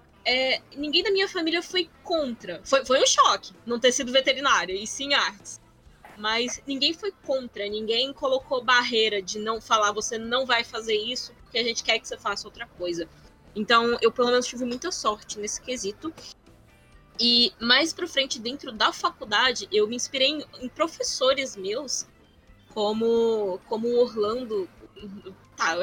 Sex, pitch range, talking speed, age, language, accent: female, 220-295 Hz, 165 wpm, 10-29, Portuguese, Brazilian